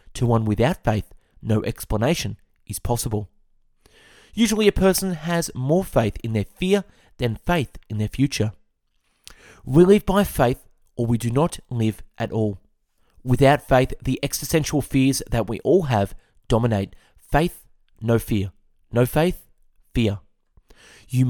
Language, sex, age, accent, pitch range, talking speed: English, male, 30-49, Australian, 110-165 Hz, 140 wpm